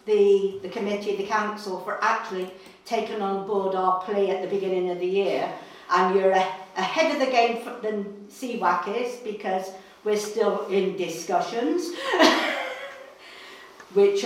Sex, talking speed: female, 140 wpm